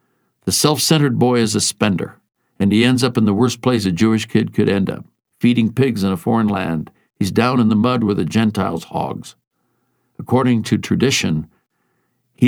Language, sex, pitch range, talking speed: English, male, 95-135 Hz, 190 wpm